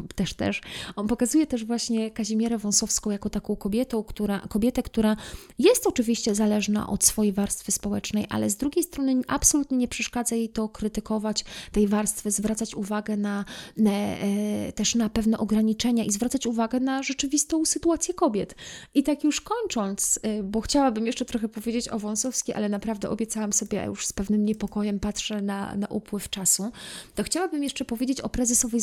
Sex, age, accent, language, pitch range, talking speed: female, 20-39, native, Polish, 205-245 Hz, 165 wpm